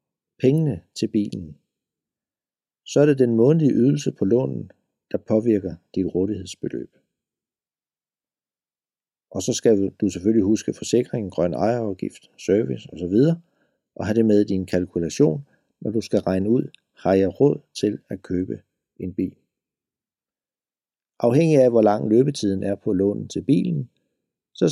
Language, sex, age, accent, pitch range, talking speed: Danish, male, 60-79, native, 95-120 Hz, 140 wpm